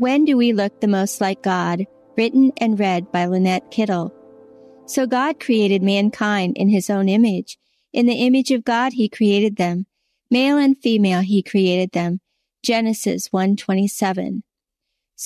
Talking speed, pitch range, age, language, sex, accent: 150 wpm, 195-250 Hz, 50-69, English, female, American